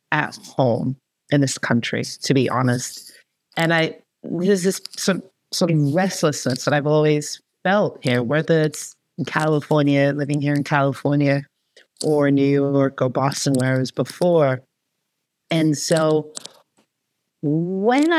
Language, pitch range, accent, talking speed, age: English, 145-195 Hz, American, 135 wpm, 40-59